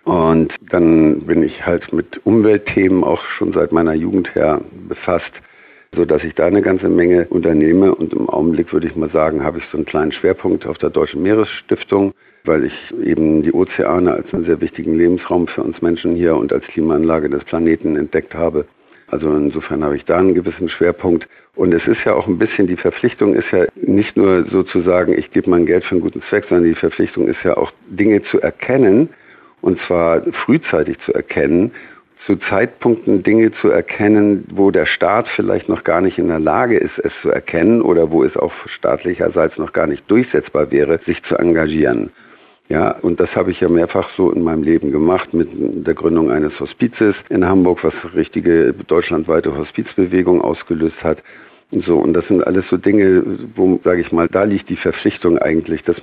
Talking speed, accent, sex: 190 wpm, German, male